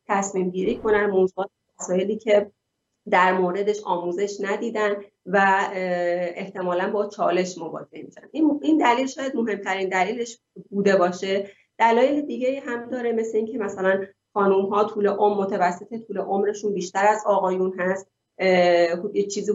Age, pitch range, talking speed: 30-49, 190-215 Hz, 125 wpm